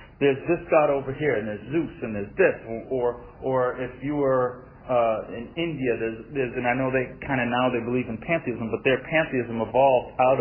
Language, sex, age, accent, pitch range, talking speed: English, male, 40-59, American, 120-165 Hz, 215 wpm